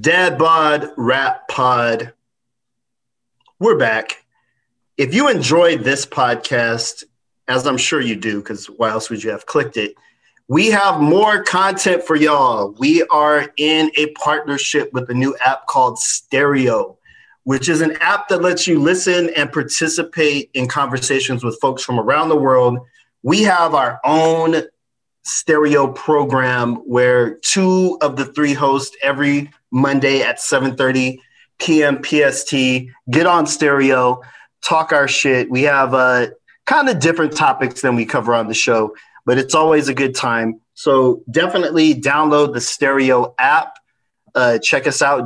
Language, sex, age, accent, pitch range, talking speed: English, male, 30-49, American, 125-155 Hz, 150 wpm